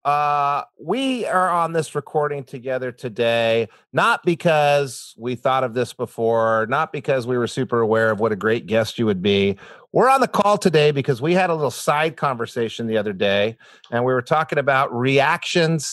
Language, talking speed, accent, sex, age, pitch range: English, 190 wpm, American, male, 40-59, 120-150 Hz